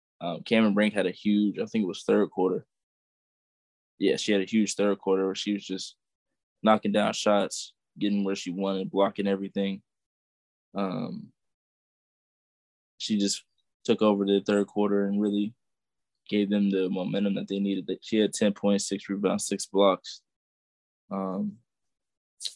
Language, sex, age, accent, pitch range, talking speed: English, male, 20-39, American, 95-115 Hz, 155 wpm